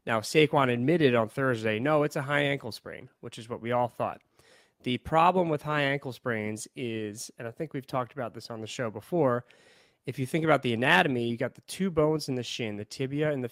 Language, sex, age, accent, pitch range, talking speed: English, male, 30-49, American, 120-145 Hz, 235 wpm